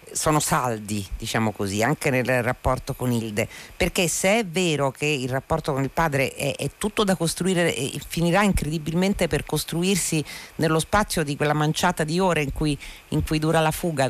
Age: 50-69